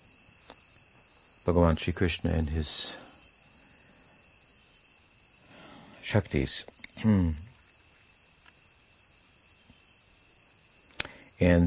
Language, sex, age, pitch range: English, male, 60-79, 80-90 Hz